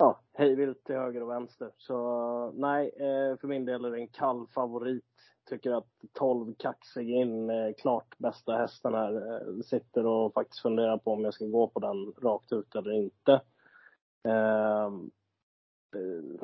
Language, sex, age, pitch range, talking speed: Swedish, male, 20-39, 110-125 Hz, 155 wpm